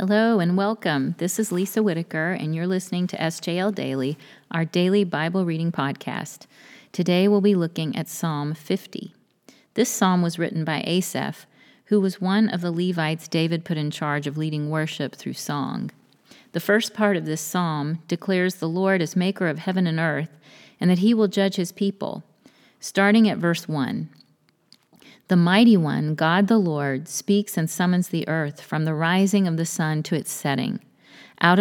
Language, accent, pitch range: English, American, 155-190 Hz